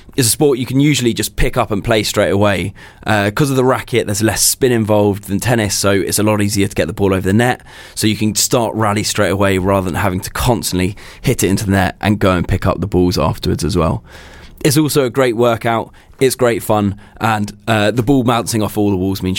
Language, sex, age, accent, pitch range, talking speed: English, male, 20-39, British, 95-115 Hz, 250 wpm